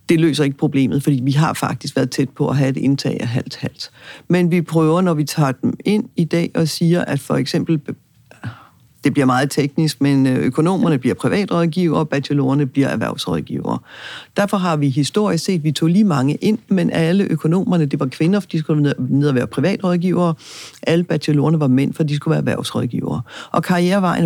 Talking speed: 195 wpm